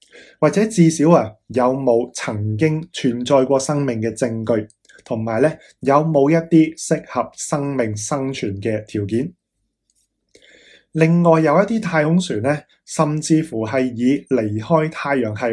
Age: 20-39